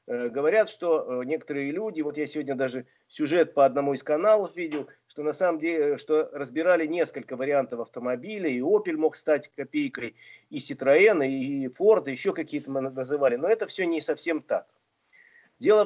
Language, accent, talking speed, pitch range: Russian, native, 165 wpm, 140-195 Hz